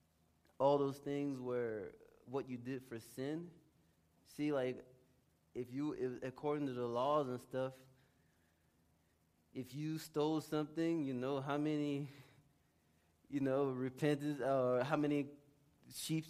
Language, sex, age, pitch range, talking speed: English, male, 20-39, 85-135 Hz, 130 wpm